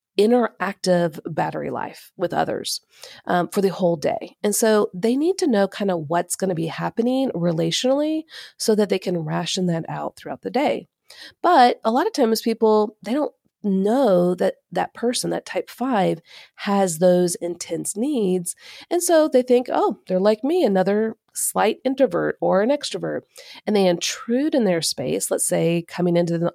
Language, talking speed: English, 175 wpm